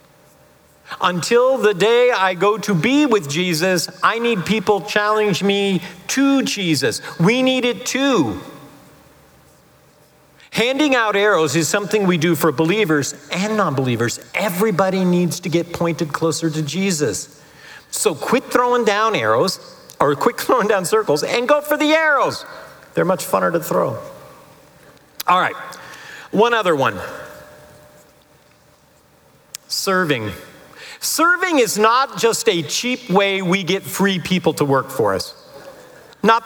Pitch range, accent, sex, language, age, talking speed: 170-255 Hz, American, male, English, 50-69, 135 wpm